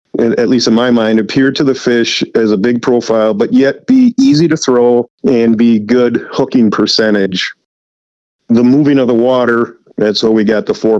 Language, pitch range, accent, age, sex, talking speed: English, 105-115 Hz, American, 50-69, male, 190 wpm